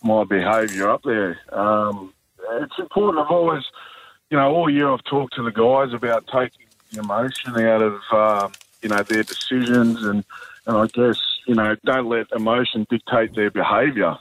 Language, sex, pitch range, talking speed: English, male, 110-130 Hz, 170 wpm